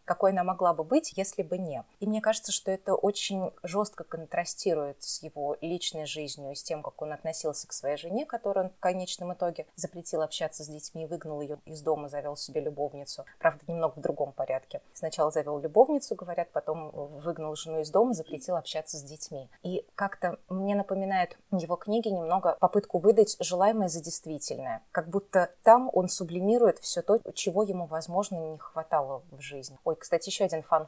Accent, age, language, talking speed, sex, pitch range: native, 20-39, Russian, 175 wpm, female, 155-190 Hz